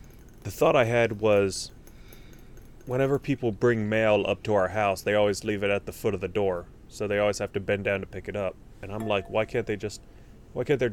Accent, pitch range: American, 100-115 Hz